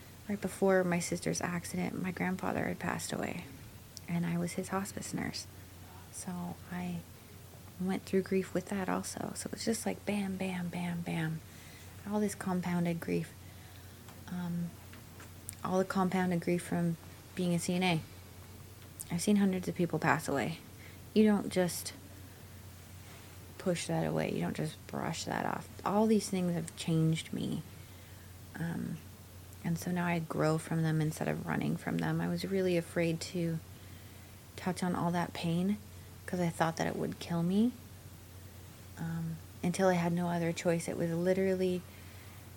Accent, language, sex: American, English, female